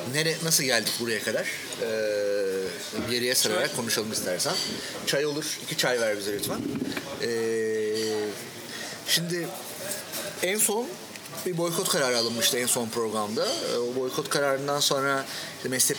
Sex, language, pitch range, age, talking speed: male, Turkish, 120-155 Hz, 40-59, 130 wpm